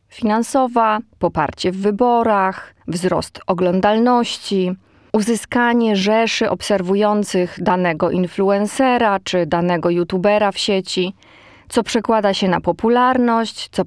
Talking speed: 95 wpm